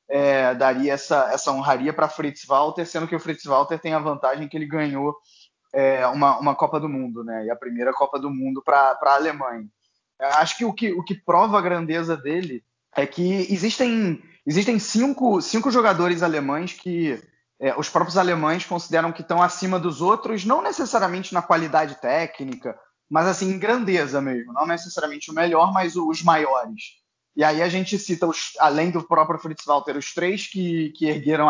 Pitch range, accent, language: 140-180 Hz, Brazilian, Portuguese